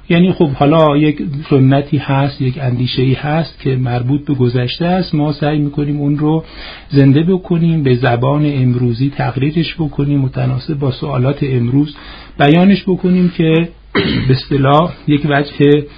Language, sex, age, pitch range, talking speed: Persian, male, 50-69, 125-150 Hz, 145 wpm